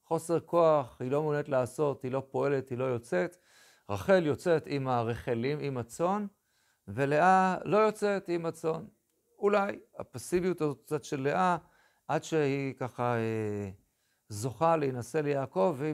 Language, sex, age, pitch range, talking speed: Hebrew, male, 50-69, 120-165 Hz, 135 wpm